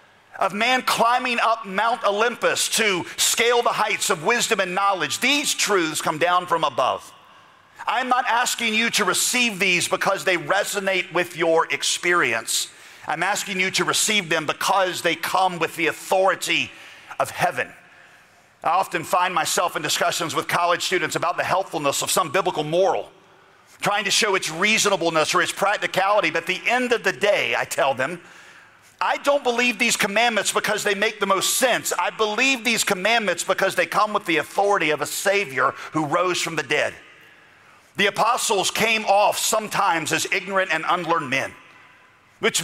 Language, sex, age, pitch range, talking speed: English, male, 40-59, 175-230 Hz, 170 wpm